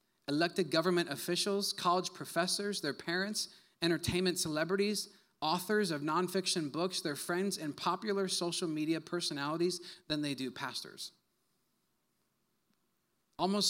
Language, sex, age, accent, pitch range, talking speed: English, male, 30-49, American, 145-185 Hz, 110 wpm